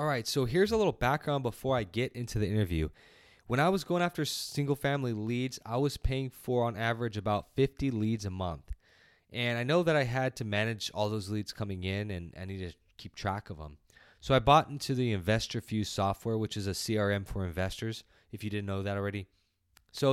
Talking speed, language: 215 wpm, English